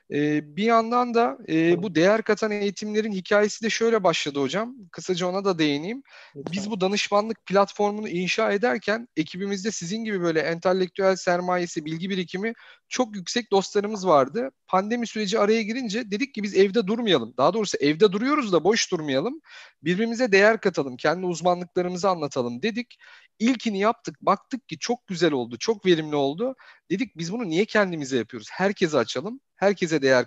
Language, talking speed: Turkish, 155 wpm